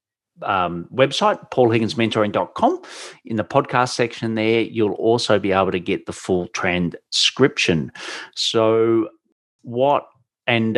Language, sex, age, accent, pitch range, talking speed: English, male, 40-59, Australian, 95-115 Hz, 115 wpm